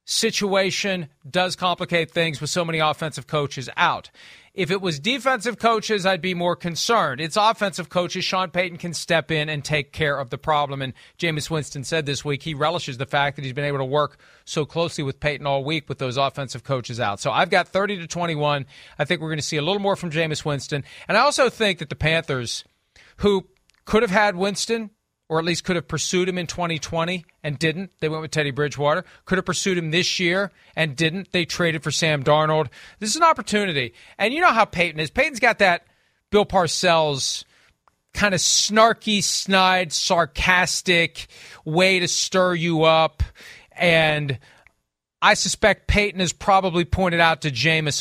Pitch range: 150-185 Hz